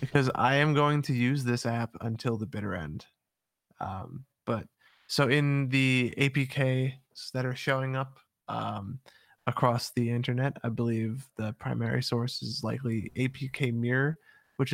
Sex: male